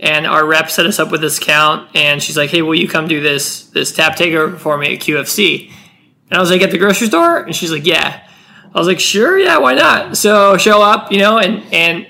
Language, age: English, 20-39